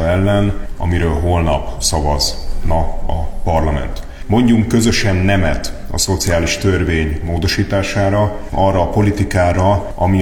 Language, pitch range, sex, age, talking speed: Hungarian, 90-135 Hz, male, 30-49, 100 wpm